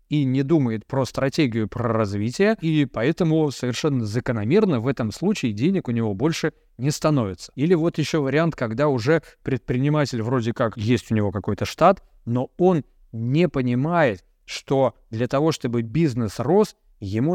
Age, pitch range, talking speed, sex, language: 20-39, 115-155 Hz, 155 wpm, male, Russian